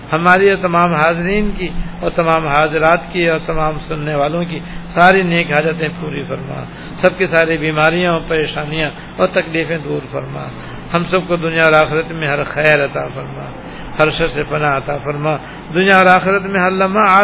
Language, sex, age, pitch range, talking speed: Urdu, male, 60-79, 150-175 Hz, 180 wpm